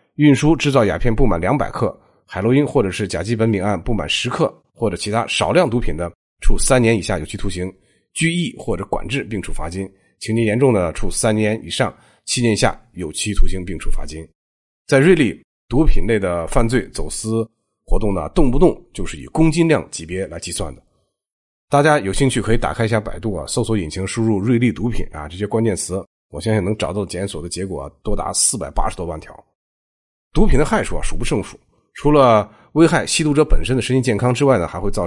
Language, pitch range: Chinese, 90-120 Hz